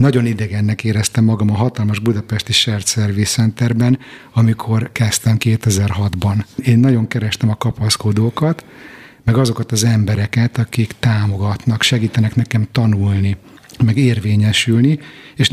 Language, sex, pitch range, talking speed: Hungarian, male, 105-125 Hz, 115 wpm